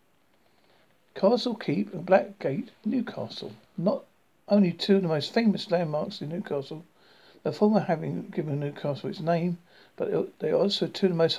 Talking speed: 160 wpm